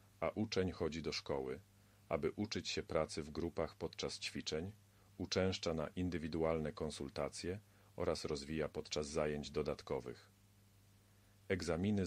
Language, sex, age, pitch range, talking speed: Polish, male, 40-59, 85-100 Hz, 115 wpm